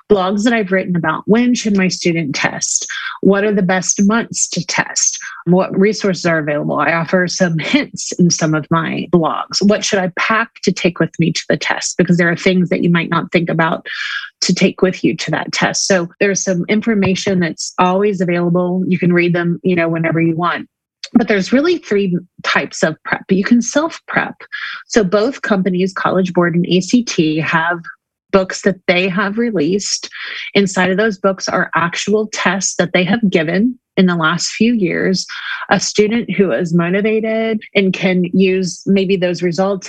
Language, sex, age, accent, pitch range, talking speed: English, female, 30-49, American, 180-220 Hz, 190 wpm